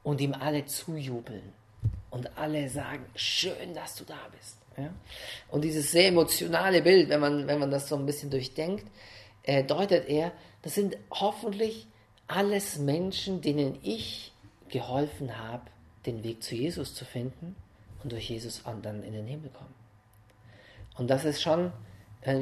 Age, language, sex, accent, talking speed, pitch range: 40-59, English, male, German, 155 wpm, 110-150 Hz